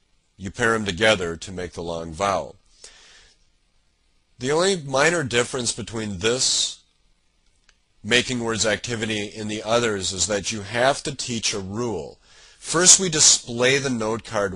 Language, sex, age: English, male, 40-59